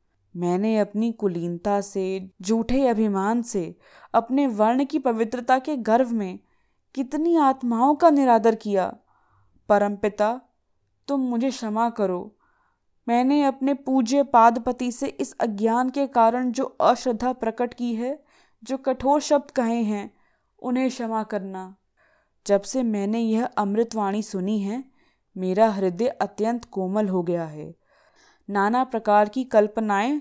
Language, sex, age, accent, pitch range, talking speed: English, female, 20-39, Indian, 190-250 Hz, 115 wpm